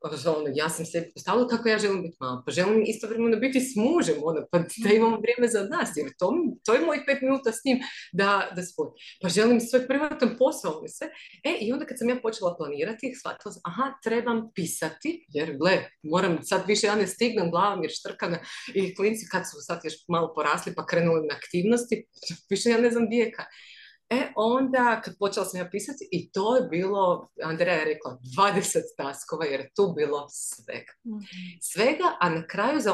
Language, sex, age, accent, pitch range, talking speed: Croatian, female, 30-49, native, 175-235 Hz, 195 wpm